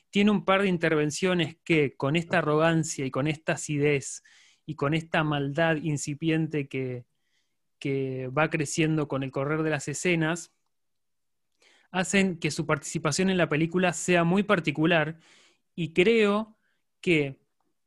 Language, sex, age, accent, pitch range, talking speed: Spanish, male, 20-39, Argentinian, 150-180 Hz, 140 wpm